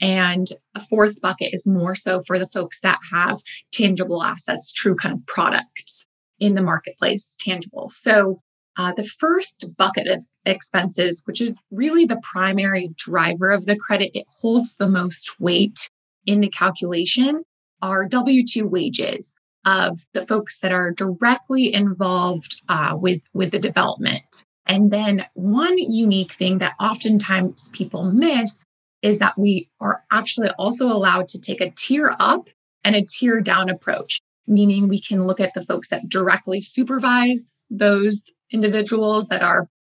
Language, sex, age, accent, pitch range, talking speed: English, female, 20-39, American, 185-220 Hz, 150 wpm